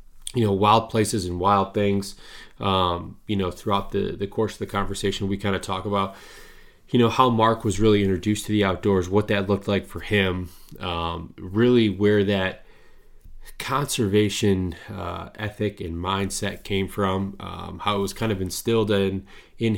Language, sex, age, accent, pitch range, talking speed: English, male, 20-39, American, 90-105 Hz, 175 wpm